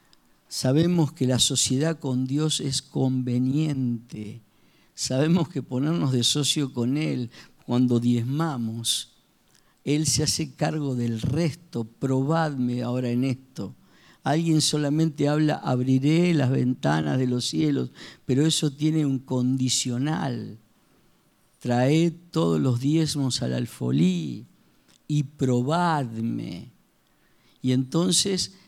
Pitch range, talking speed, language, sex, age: 130-180 Hz, 105 wpm, Spanish, male, 50-69